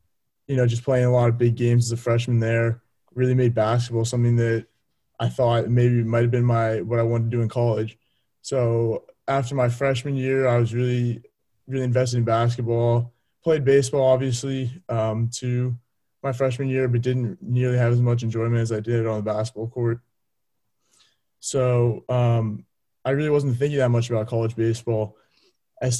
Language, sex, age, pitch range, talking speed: English, male, 20-39, 115-125 Hz, 180 wpm